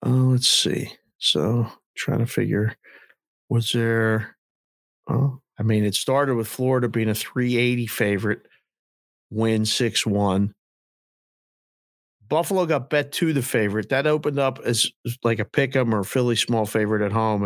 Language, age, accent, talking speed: English, 50-69, American, 150 wpm